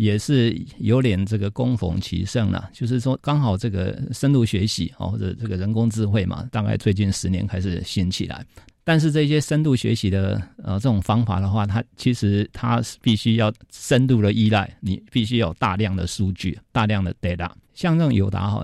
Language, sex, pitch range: Chinese, male, 95-120 Hz